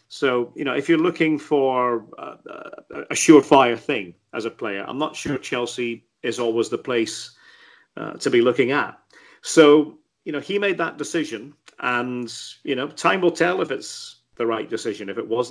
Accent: British